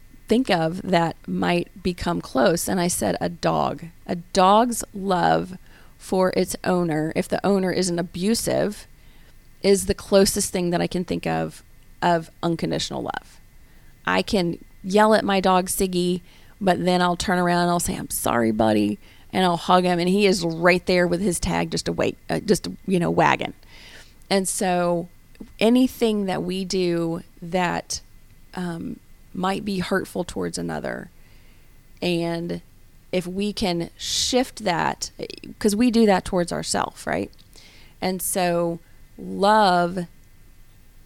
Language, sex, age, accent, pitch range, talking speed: English, female, 30-49, American, 165-195 Hz, 150 wpm